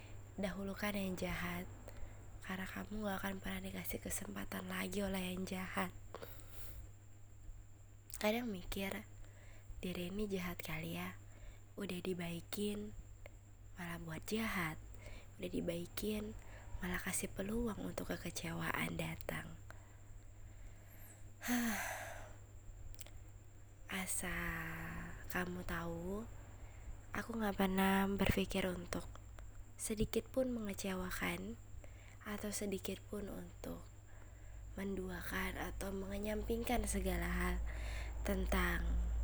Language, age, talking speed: Indonesian, 20-39, 85 wpm